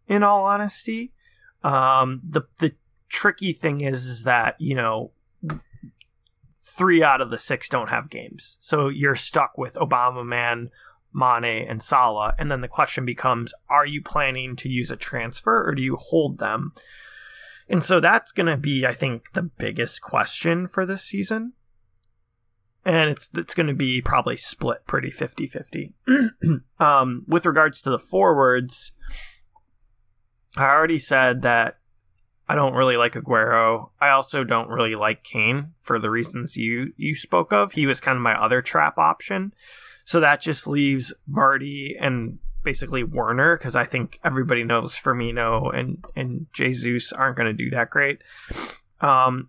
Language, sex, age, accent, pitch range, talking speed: English, male, 30-49, American, 120-155 Hz, 160 wpm